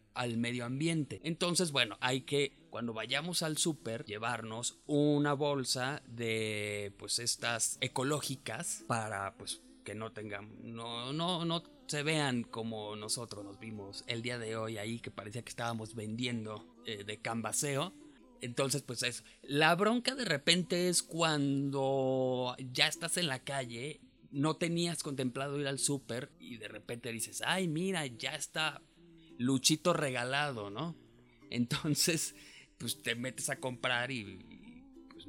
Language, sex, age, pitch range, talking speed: Spanish, male, 30-49, 115-155 Hz, 145 wpm